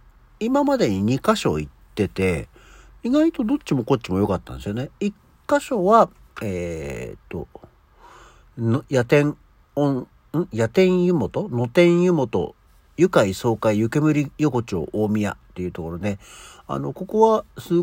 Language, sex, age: Japanese, male, 50-69